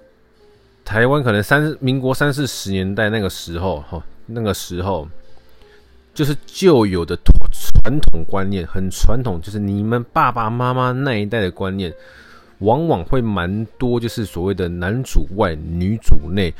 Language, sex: Chinese, male